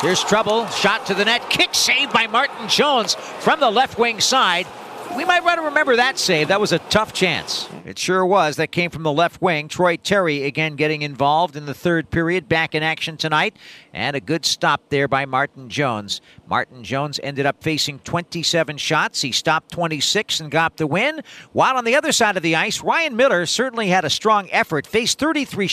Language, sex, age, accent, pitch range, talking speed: English, male, 50-69, American, 135-190 Hz, 210 wpm